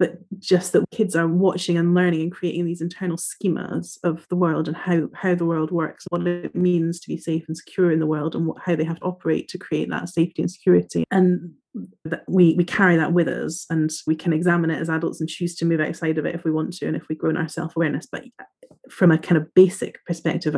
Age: 30-49